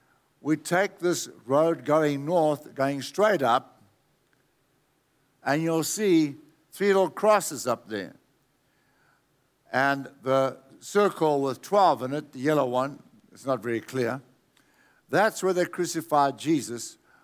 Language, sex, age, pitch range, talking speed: English, male, 60-79, 130-170 Hz, 125 wpm